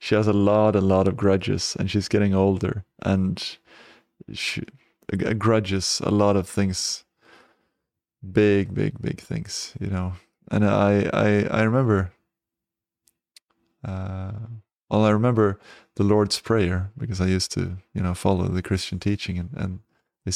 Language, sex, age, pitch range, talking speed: English, male, 20-39, 95-110 Hz, 145 wpm